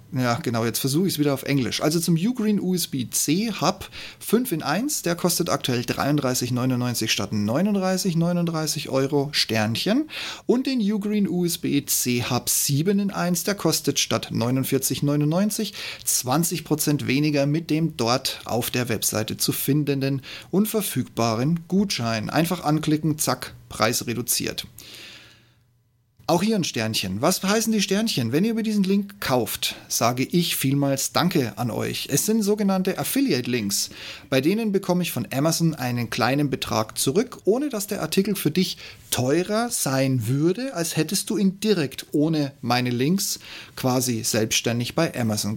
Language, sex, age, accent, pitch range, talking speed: German, male, 30-49, German, 120-180 Hz, 145 wpm